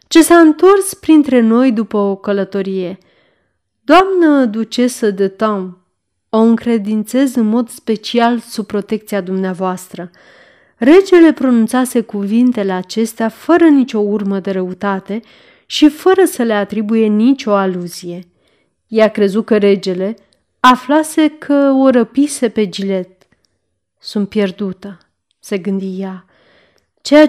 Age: 30-49